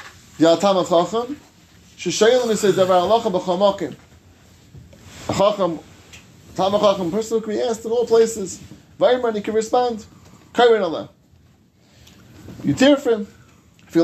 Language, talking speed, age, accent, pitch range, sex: English, 125 wpm, 30-49, American, 145-220 Hz, male